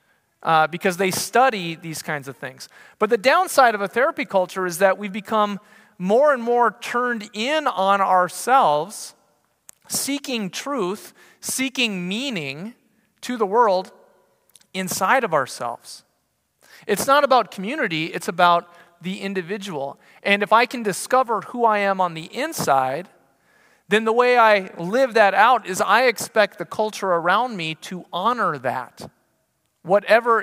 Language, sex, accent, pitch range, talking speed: English, male, American, 180-235 Hz, 145 wpm